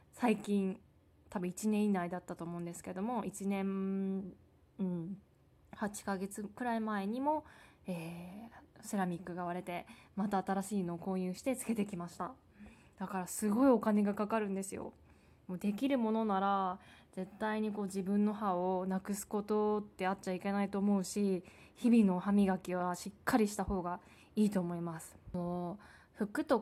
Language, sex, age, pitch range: Japanese, female, 20-39, 185-220 Hz